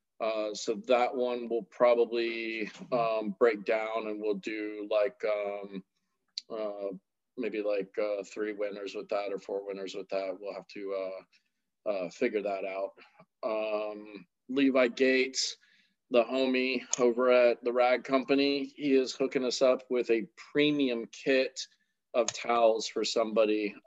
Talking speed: 145 wpm